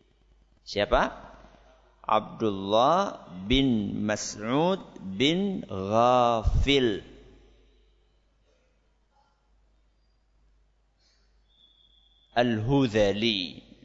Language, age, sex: Malay, 50-69, male